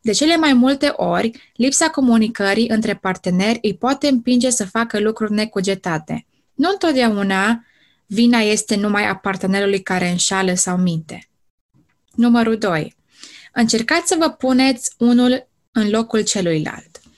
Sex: female